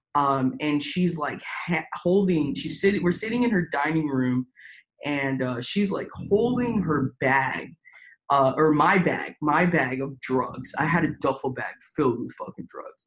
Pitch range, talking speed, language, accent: 130-175 Hz, 175 wpm, English, American